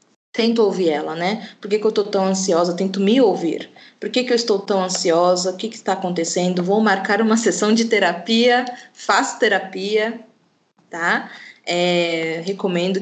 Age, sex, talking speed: 20-39, female, 170 wpm